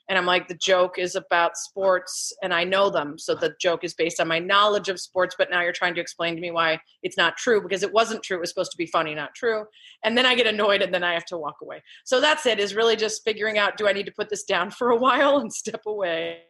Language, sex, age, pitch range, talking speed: English, female, 30-49, 175-215 Hz, 285 wpm